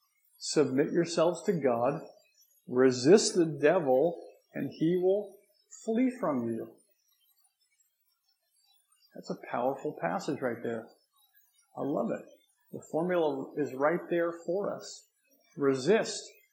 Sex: male